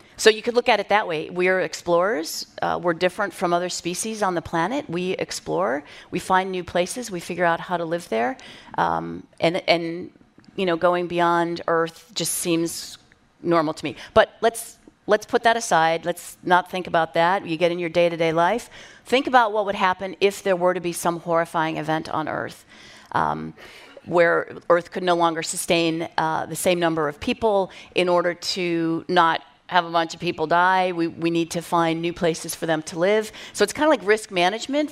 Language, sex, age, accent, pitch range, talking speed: English, female, 40-59, American, 165-200 Hz, 205 wpm